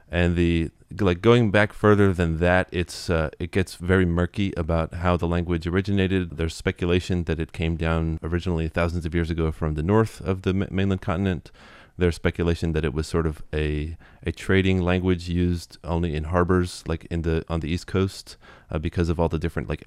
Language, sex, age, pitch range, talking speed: English, male, 30-49, 75-90 Hz, 200 wpm